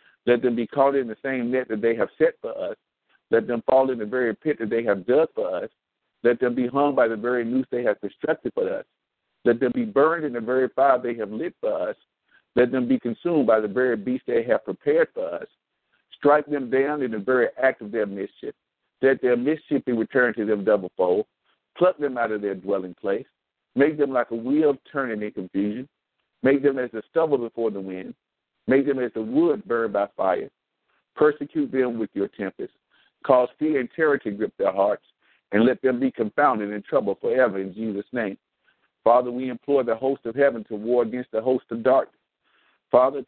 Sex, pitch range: male, 115-145 Hz